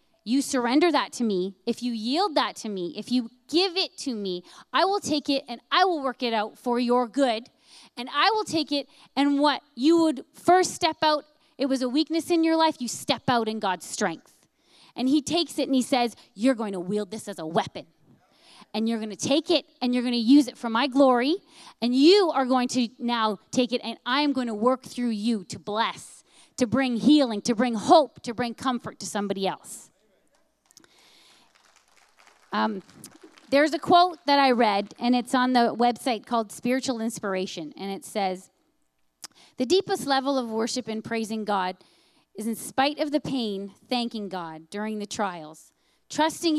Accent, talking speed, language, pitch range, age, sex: American, 195 wpm, English, 220-300 Hz, 30-49, female